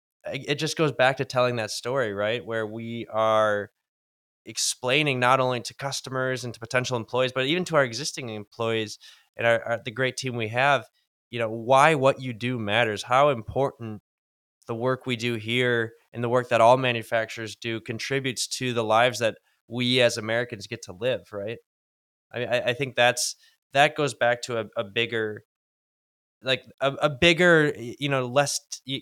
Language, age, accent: English, 20-39, American